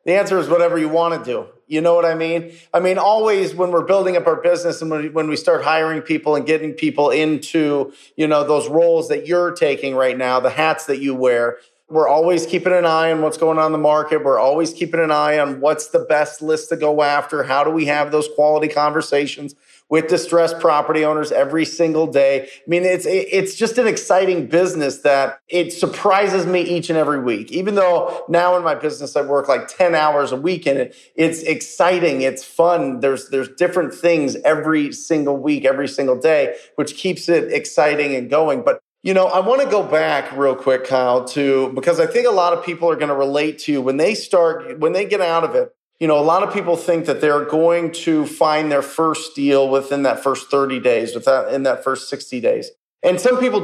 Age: 30-49